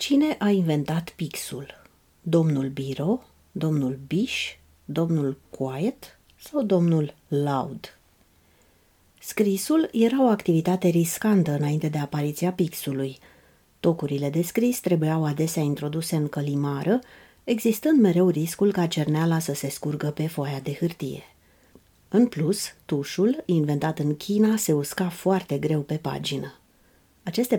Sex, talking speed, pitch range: female, 120 wpm, 145-190 Hz